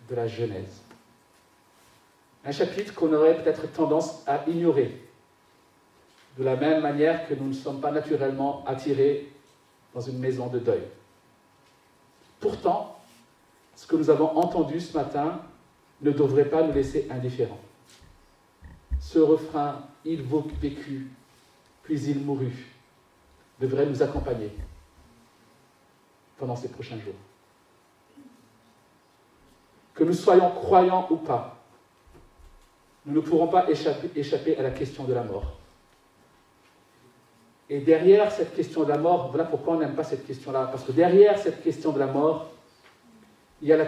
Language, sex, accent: French, male, French